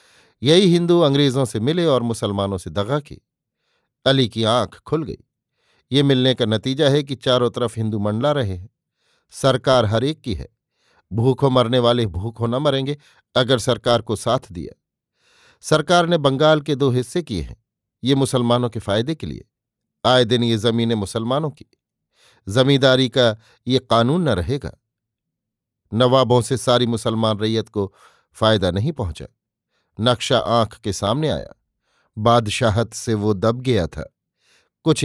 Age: 50-69